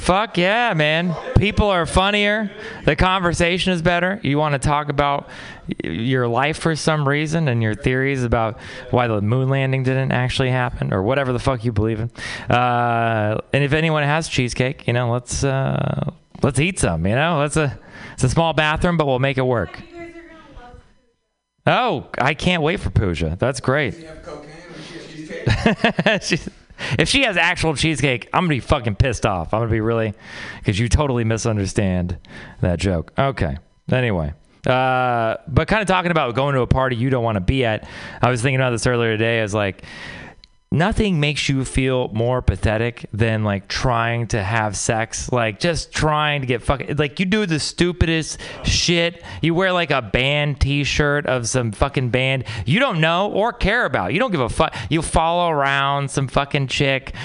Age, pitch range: 30-49, 120-160 Hz